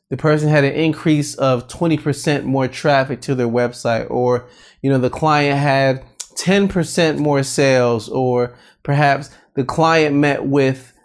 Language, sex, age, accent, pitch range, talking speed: English, male, 30-49, American, 125-155 Hz, 160 wpm